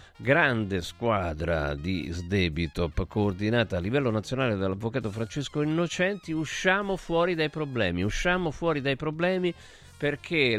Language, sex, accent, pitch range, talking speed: Italian, male, native, 105-155 Hz, 115 wpm